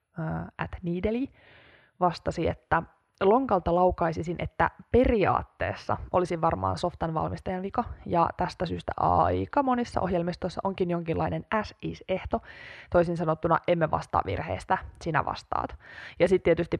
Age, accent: 20-39, native